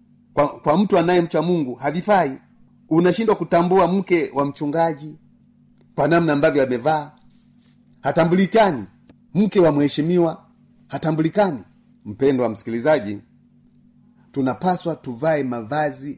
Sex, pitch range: male, 130-180 Hz